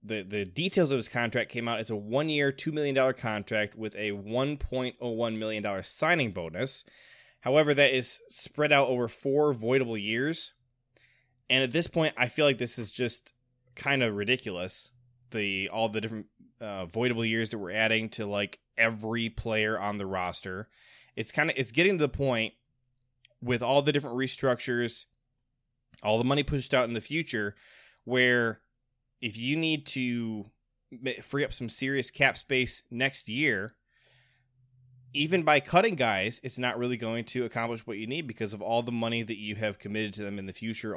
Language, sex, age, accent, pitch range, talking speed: English, male, 20-39, American, 110-130 Hz, 185 wpm